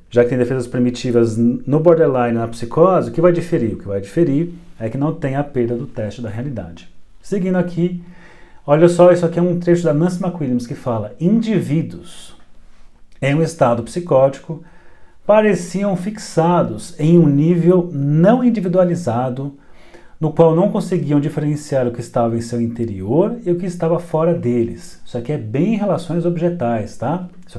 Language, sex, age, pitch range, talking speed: Portuguese, male, 40-59, 120-175 Hz, 170 wpm